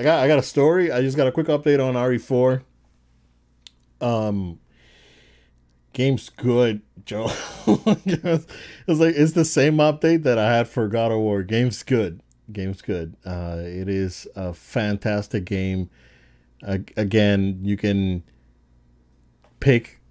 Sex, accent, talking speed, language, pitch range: male, American, 130 wpm, English, 90-125 Hz